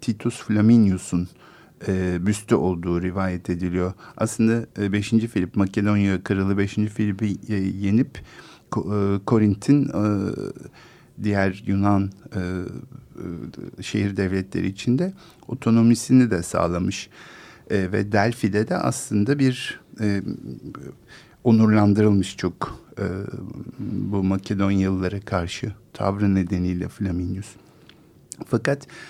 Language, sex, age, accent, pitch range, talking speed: Turkish, male, 50-69, native, 95-125 Hz, 100 wpm